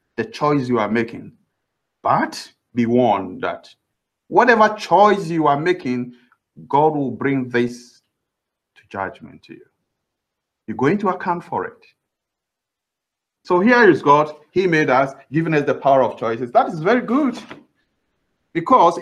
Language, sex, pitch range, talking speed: English, male, 140-200 Hz, 145 wpm